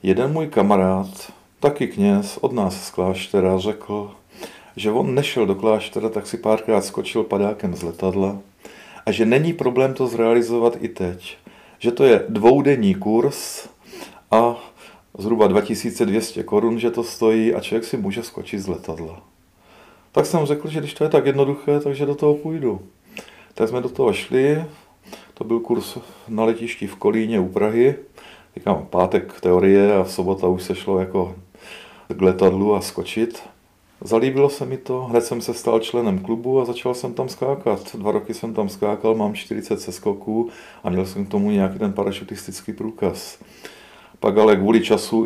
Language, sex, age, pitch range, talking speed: Czech, male, 40-59, 95-120 Hz, 165 wpm